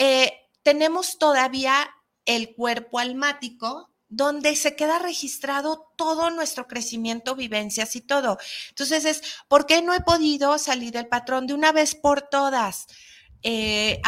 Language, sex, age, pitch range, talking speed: Spanish, female, 40-59, 230-300 Hz, 135 wpm